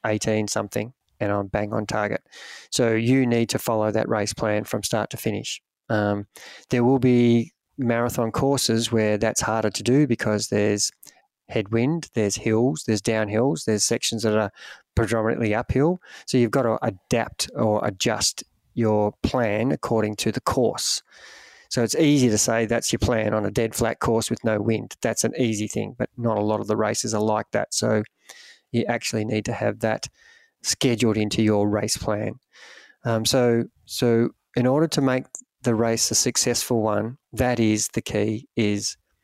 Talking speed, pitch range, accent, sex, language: 175 wpm, 110-120 Hz, Australian, male, English